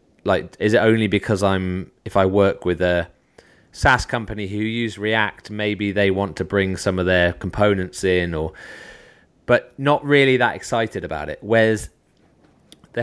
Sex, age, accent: male, 20-39, British